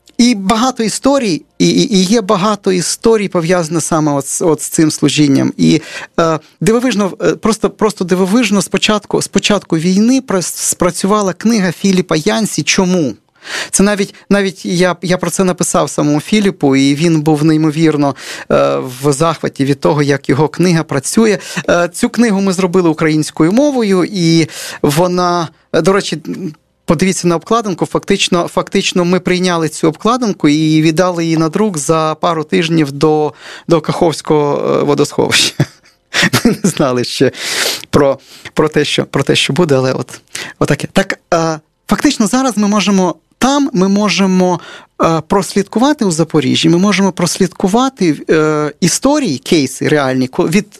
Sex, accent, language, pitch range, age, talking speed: male, native, Ukrainian, 155-200 Hz, 40-59, 135 wpm